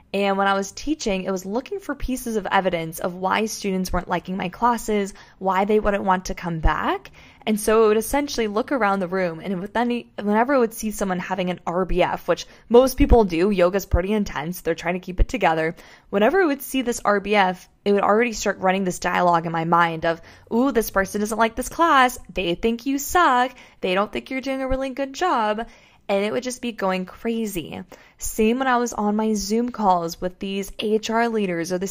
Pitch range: 185-235 Hz